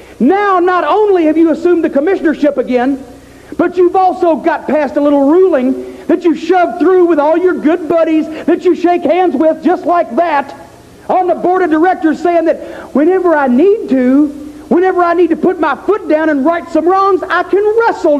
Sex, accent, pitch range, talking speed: male, American, 290-350 Hz, 200 wpm